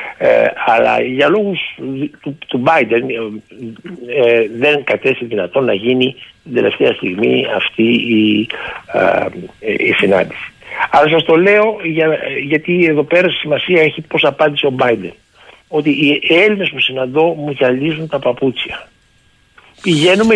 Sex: male